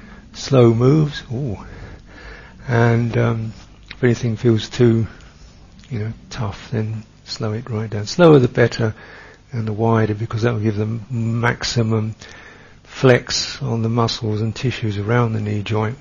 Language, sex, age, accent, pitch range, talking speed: English, male, 60-79, British, 105-120 Hz, 145 wpm